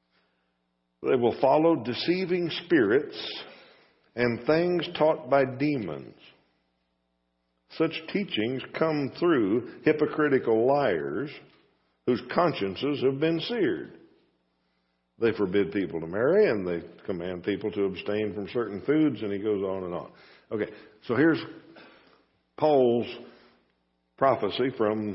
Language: English